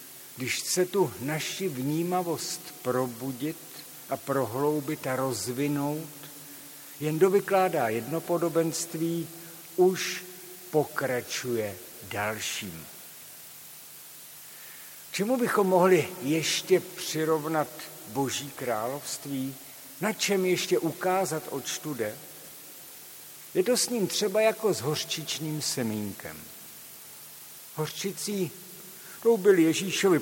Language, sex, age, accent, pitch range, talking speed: Czech, male, 60-79, native, 135-170 Hz, 80 wpm